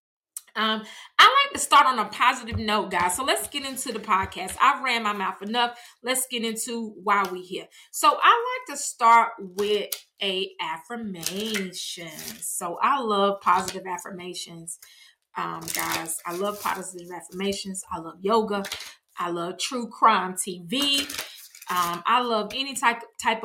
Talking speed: 150 wpm